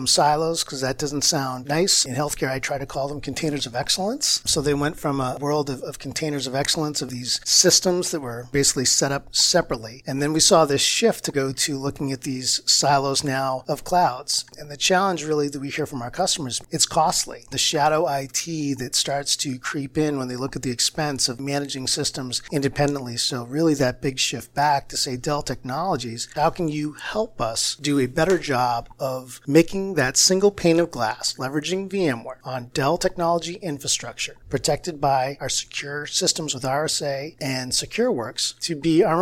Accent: American